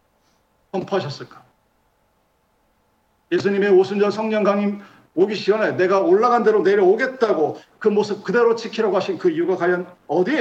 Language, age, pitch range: Korean, 50-69, 160-220 Hz